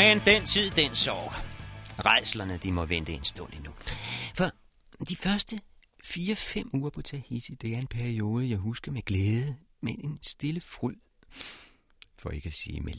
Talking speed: 165 wpm